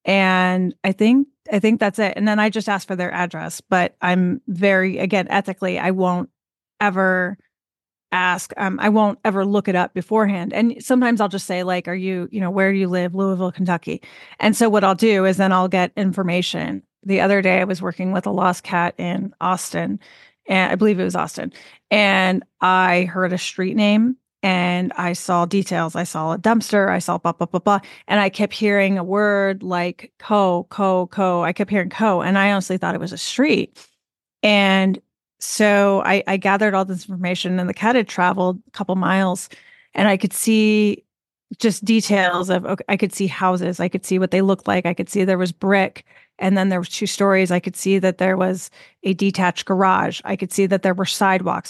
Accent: American